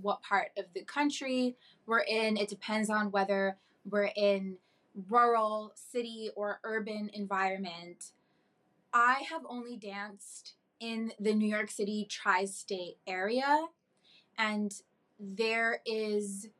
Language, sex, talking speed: English, female, 115 wpm